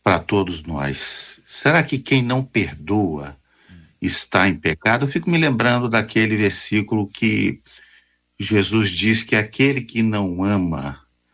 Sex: male